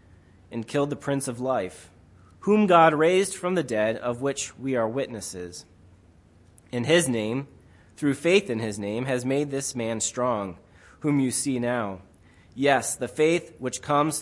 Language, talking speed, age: English, 165 wpm, 30-49